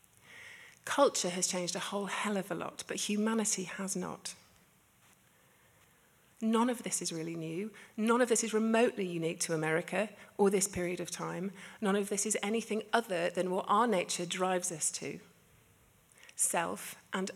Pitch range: 165-210 Hz